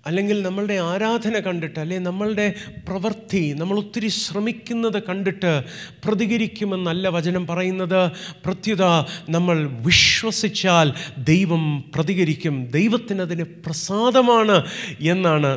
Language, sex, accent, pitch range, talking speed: Malayalam, male, native, 140-195 Hz, 80 wpm